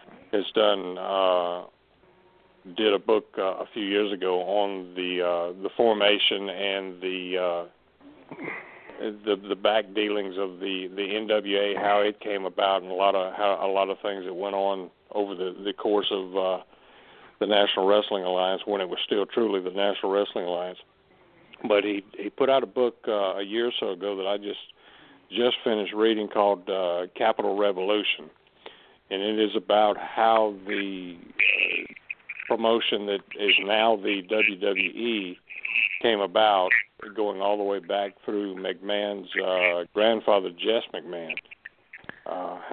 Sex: male